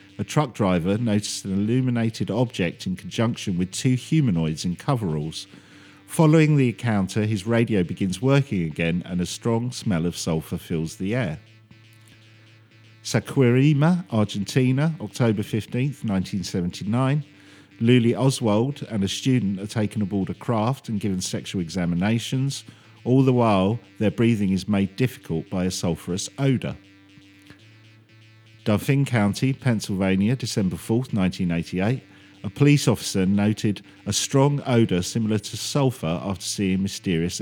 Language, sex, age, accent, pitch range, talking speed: English, male, 50-69, British, 95-120 Hz, 130 wpm